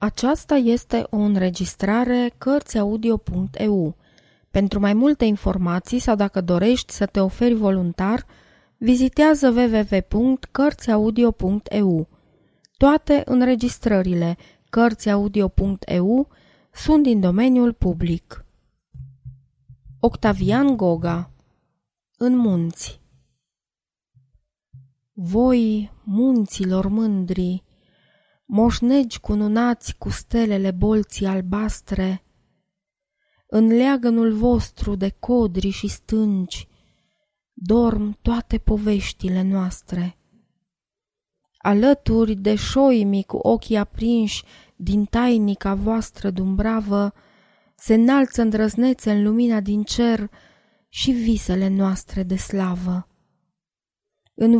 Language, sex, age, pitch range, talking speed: Romanian, female, 20-39, 190-235 Hz, 80 wpm